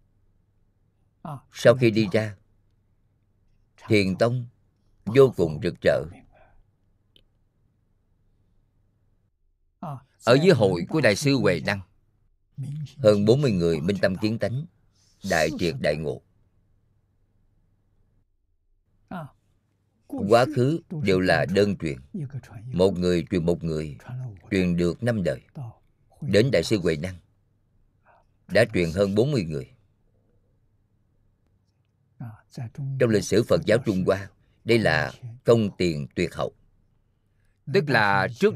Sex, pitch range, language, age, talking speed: male, 100-115 Hz, Vietnamese, 50-69, 110 wpm